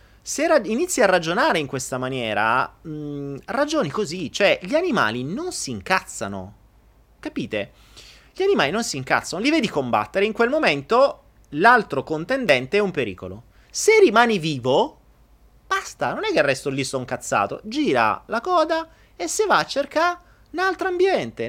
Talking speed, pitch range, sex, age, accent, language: 155 wpm, 130-205 Hz, male, 30-49, native, Italian